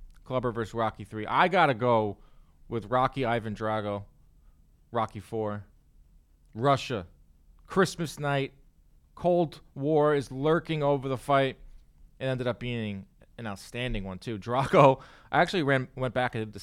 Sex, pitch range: male, 105-145 Hz